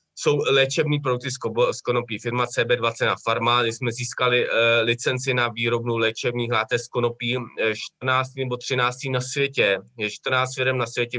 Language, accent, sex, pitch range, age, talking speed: Czech, native, male, 125-160 Hz, 20-39, 170 wpm